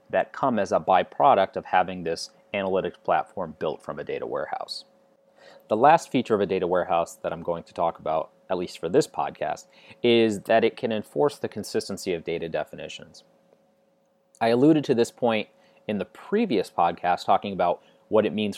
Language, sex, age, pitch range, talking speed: English, male, 30-49, 100-135 Hz, 185 wpm